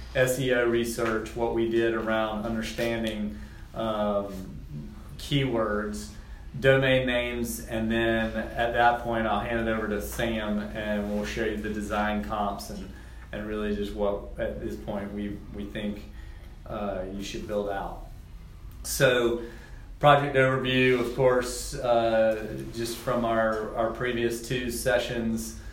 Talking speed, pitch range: 135 wpm, 105-115 Hz